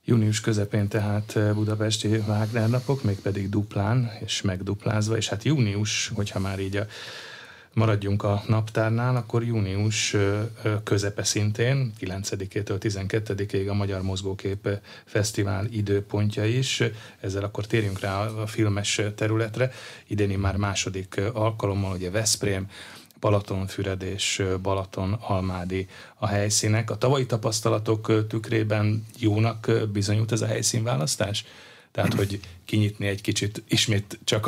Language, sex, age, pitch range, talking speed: Hungarian, male, 30-49, 100-110 Hz, 115 wpm